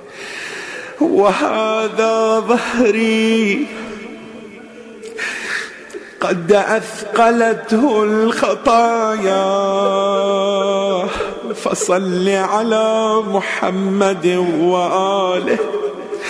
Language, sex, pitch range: Arabic, male, 220-255 Hz